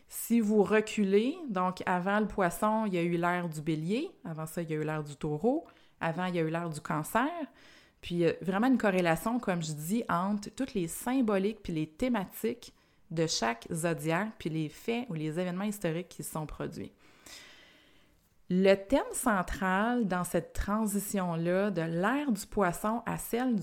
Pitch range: 170-220 Hz